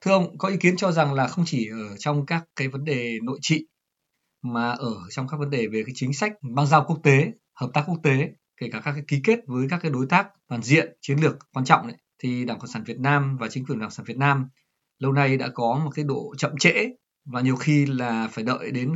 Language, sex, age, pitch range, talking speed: Vietnamese, male, 20-39, 130-165 Hz, 265 wpm